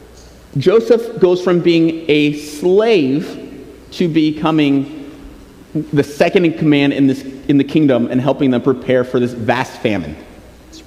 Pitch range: 145-190 Hz